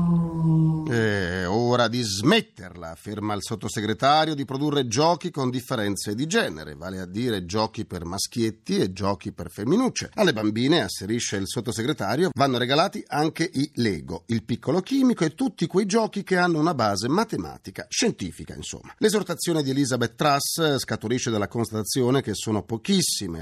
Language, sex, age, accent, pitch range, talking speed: Italian, male, 40-59, native, 105-155 Hz, 150 wpm